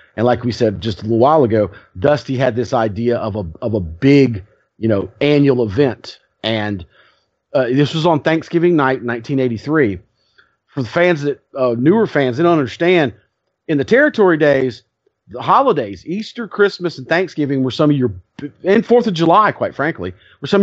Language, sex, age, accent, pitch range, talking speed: English, male, 40-59, American, 120-155 Hz, 180 wpm